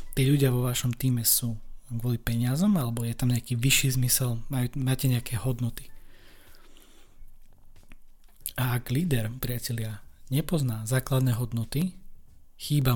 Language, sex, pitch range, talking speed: Slovak, male, 115-135 Hz, 115 wpm